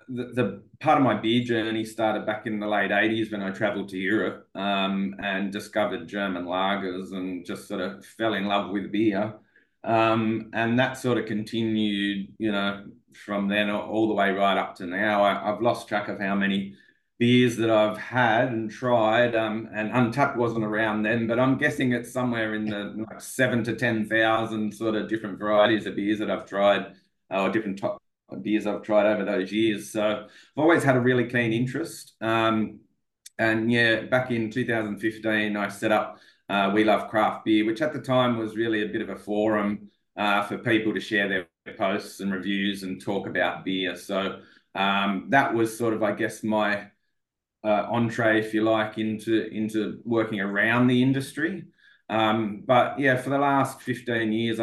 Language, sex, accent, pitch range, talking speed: English, male, Australian, 100-115 Hz, 185 wpm